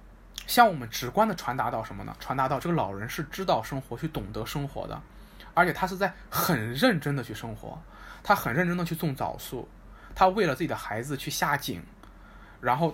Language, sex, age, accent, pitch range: Chinese, male, 20-39, native, 120-180 Hz